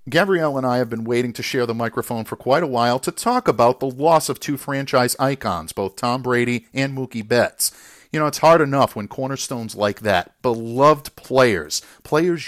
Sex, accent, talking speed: male, American, 195 wpm